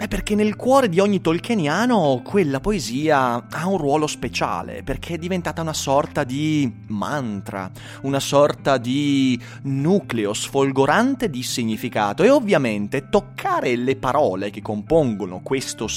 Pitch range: 105-145 Hz